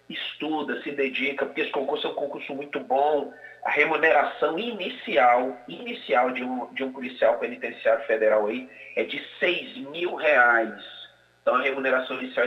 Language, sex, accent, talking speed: Portuguese, male, Brazilian, 155 wpm